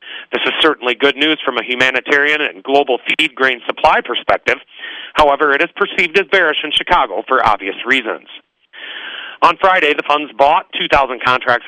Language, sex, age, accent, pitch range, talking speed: English, male, 40-59, American, 125-155 Hz, 165 wpm